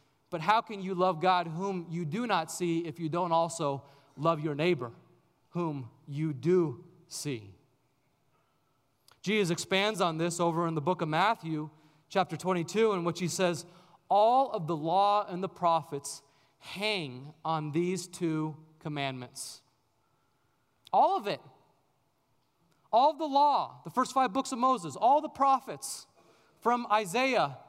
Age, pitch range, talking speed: 30-49, 140-200 Hz, 145 wpm